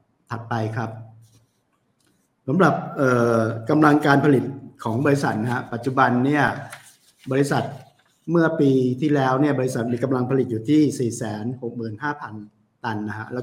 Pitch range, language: 115-135 Hz, Thai